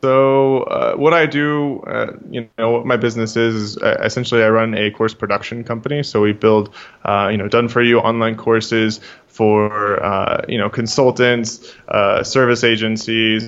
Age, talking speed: 20-39, 175 wpm